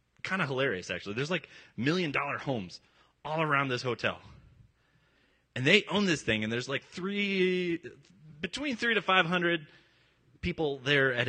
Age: 30-49